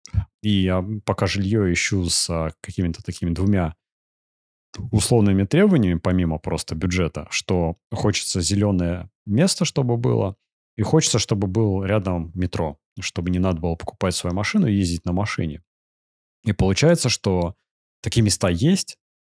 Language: Russian